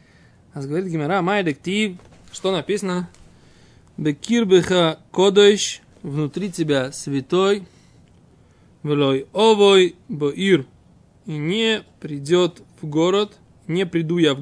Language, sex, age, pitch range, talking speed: Russian, male, 20-39, 150-190 Hz, 95 wpm